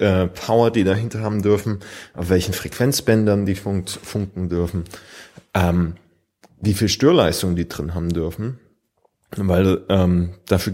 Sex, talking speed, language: male, 125 wpm, German